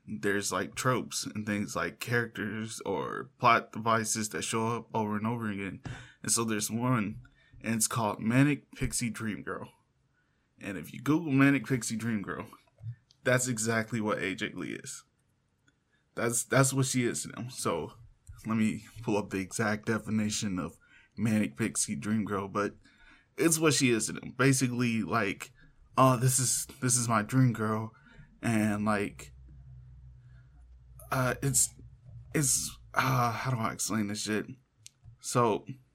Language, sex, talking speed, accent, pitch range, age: English, male, 155 wpm, American, 110-130 Hz, 20-39